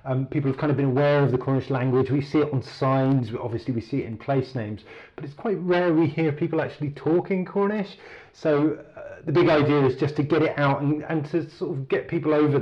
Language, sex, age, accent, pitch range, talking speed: English, male, 30-49, British, 105-145 Hz, 245 wpm